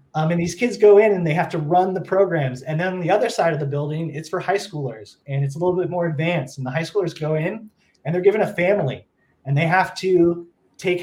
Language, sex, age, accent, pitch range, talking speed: English, male, 30-49, American, 140-190 Hz, 265 wpm